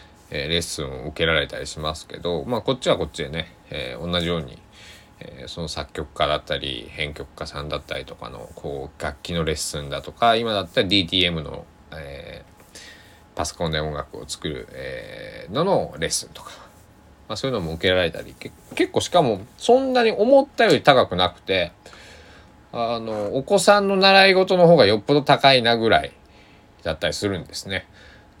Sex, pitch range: male, 85-115 Hz